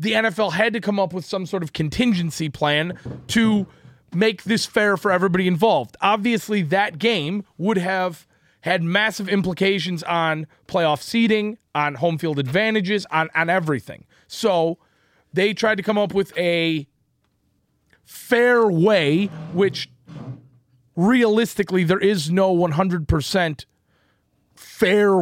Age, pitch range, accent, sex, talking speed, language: 30-49, 150-195 Hz, American, male, 130 wpm, English